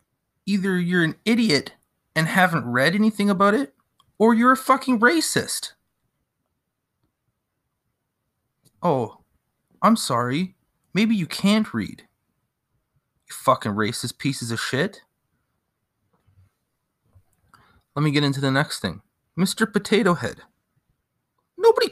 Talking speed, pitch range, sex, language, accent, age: 105 wpm, 145-220 Hz, male, English, American, 30-49